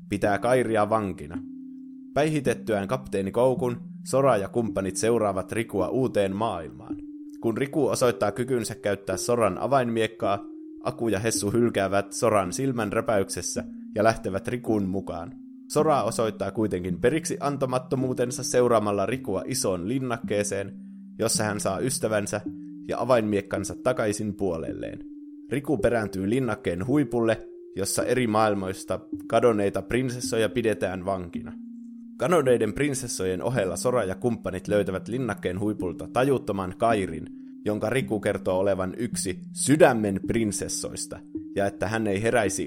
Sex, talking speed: male, 115 wpm